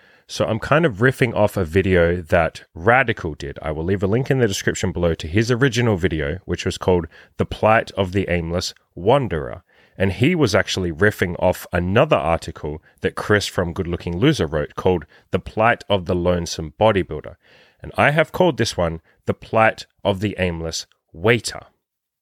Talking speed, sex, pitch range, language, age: 180 wpm, male, 90-115 Hz, English, 30-49